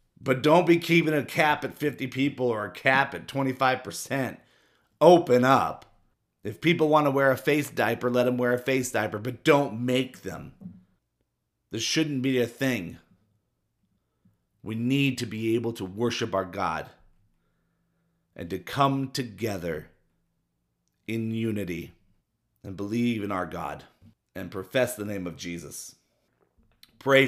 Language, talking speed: English, 145 wpm